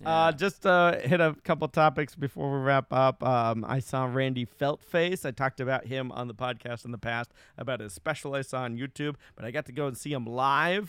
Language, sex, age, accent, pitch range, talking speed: English, male, 30-49, American, 125-155 Hz, 230 wpm